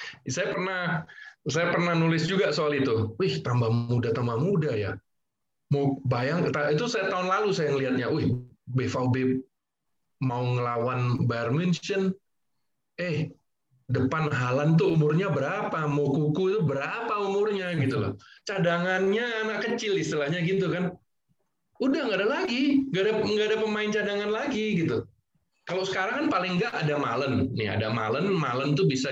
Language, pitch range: Indonesian, 125-190 Hz